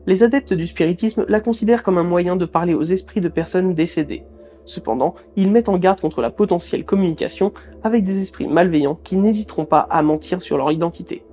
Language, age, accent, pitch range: French, 20-39, French, 160-215 Hz